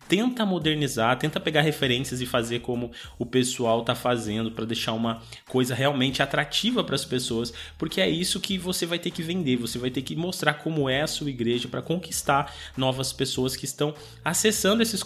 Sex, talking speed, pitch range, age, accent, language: male, 190 wpm, 125-170 Hz, 20-39, Brazilian, Portuguese